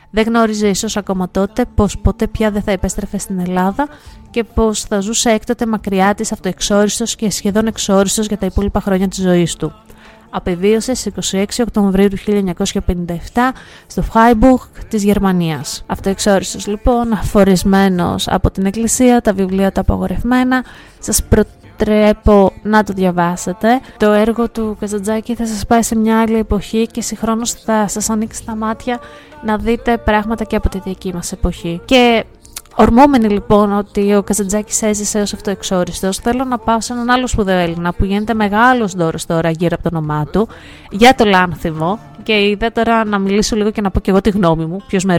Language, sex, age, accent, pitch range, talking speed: Greek, female, 20-39, native, 190-225 Hz, 170 wpm